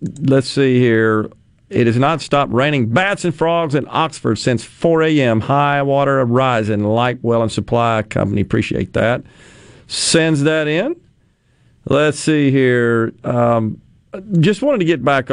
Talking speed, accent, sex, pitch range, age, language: 150 wpm, American, male, 115-145 Hz, 50-69, English